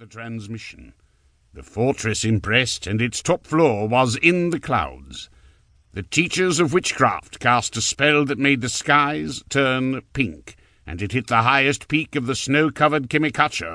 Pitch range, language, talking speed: 105-145 Hz, English, 155 wpm